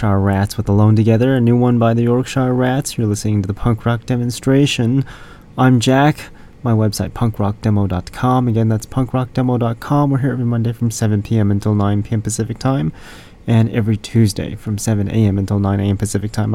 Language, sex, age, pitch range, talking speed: English, male, 30-49, 100-120 Hz, 180 wpm